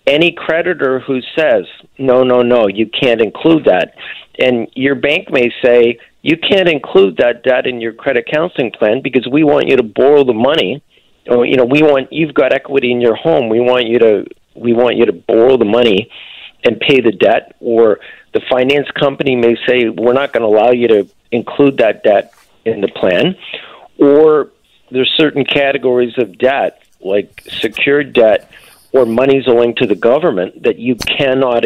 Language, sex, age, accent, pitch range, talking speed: English, male, 40-59, American, 120-145 Hz, 185 wpm